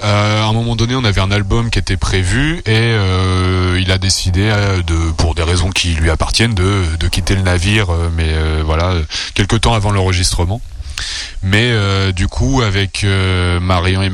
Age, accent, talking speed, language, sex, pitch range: 20-39, French, 185 wpm, French, male, 90-110 Hz